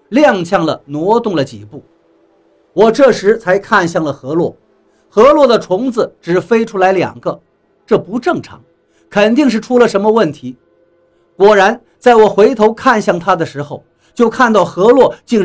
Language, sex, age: Chinese, male, 50-69